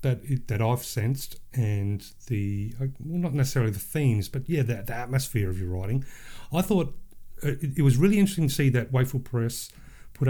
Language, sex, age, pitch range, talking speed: English, male, 40-59, 105-135 Hz, 175 wpm